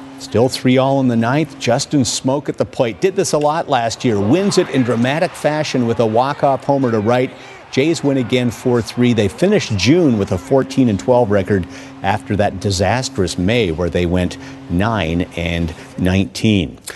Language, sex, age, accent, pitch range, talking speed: English, male, 50-69, American, 105-135 Hz, 185 wpm